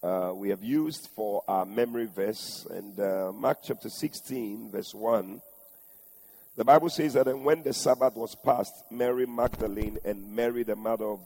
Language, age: English, 50-69